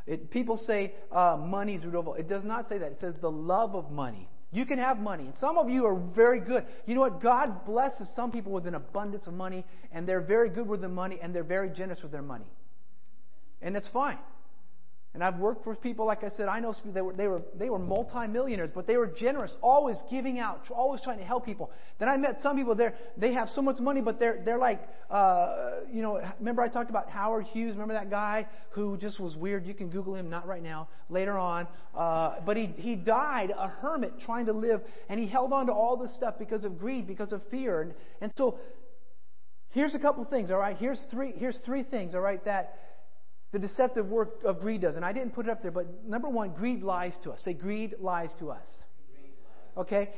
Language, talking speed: English, 230 wpm